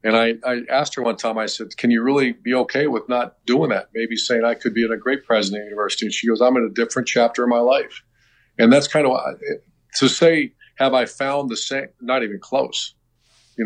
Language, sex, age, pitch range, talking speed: English, male, 50-69, 110-125 Hz, 245 wpm